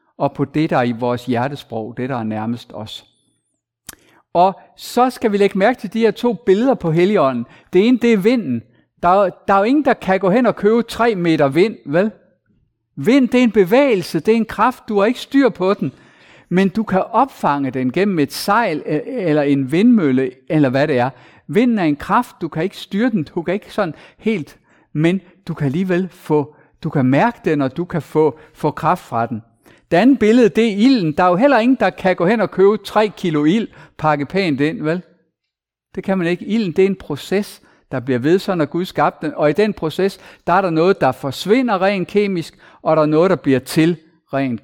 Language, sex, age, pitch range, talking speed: Danish, male, 50-69, 145-205 Hz, 225 wpm